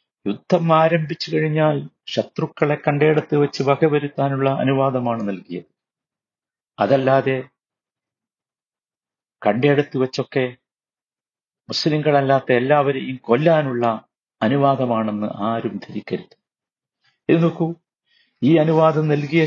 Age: 50-69